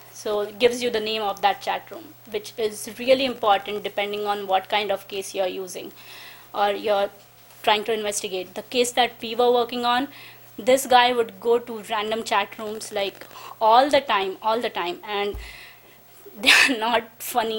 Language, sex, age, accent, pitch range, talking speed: English, female, 20-39, Indian, 200-230 Hz, 180 wpm